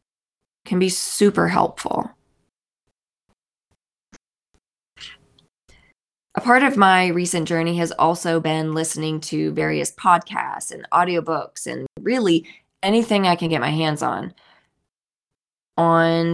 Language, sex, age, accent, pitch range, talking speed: English, female, 20-39, American, 160-195 Hz, 105 wpm